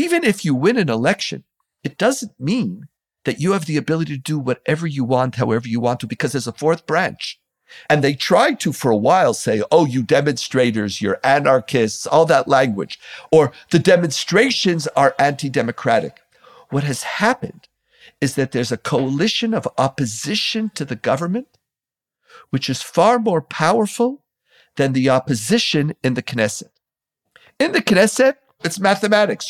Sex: male